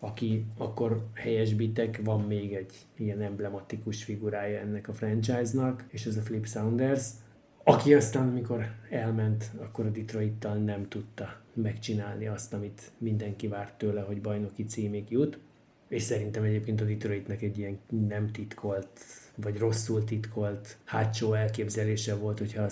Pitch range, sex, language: 105-115 Hz, male, Hungarian